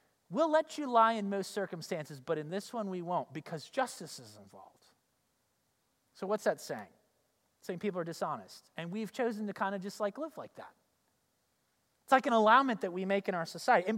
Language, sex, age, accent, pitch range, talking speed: English, male, 30-49, American, 190-260 Hz, 205 wpm